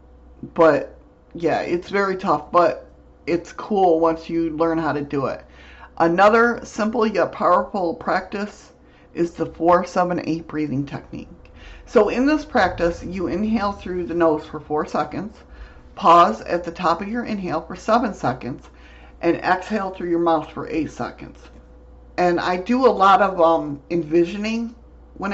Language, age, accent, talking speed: English, 50-69, American, 150 wpm